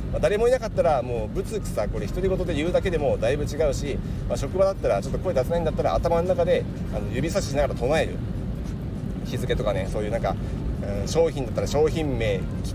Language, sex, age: Japanese, male, 40-59